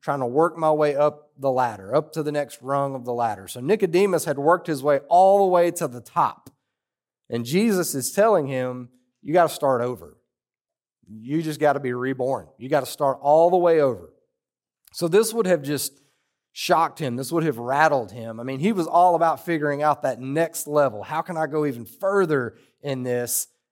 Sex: male